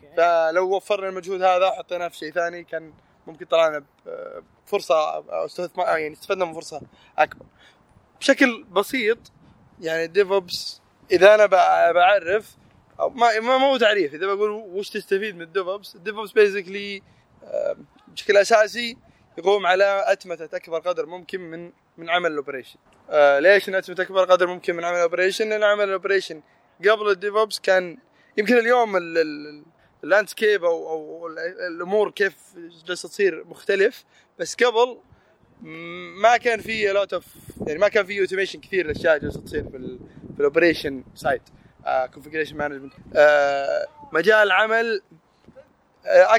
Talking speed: 130 wpm